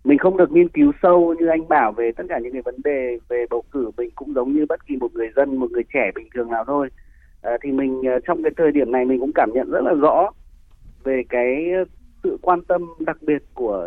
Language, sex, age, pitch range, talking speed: Vietnamese, male, 30-49, 120-155 Hz, 250 wpm